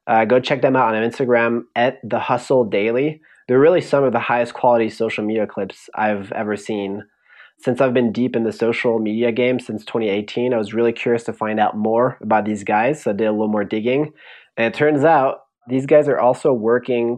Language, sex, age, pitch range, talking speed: English, male, 20-39, 110-130 Hz, 215 wpm